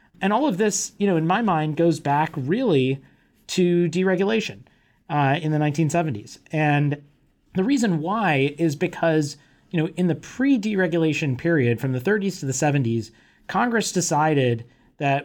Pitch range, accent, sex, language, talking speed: 130-170 Hz, American, male, English, 155 wpm